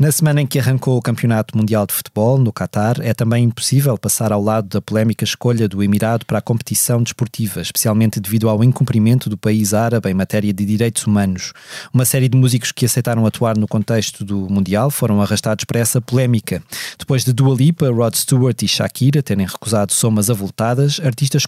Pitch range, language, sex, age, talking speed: 105-130 Hz, Portuguese, male, 20-39, 190 wpm